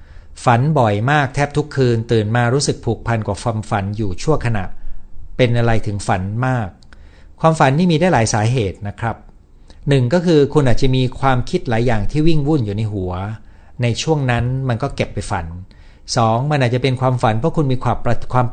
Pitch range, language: 95-135 Hz, Thai